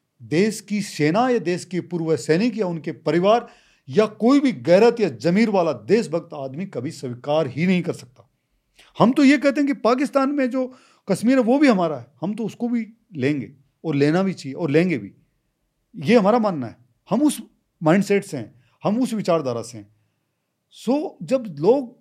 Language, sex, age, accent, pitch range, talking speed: Hindi, male, 40-59, native, 155-230 Hz, 190 wpm